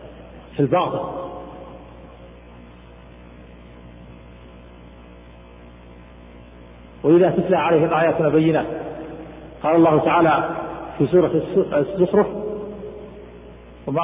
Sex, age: male, 50-69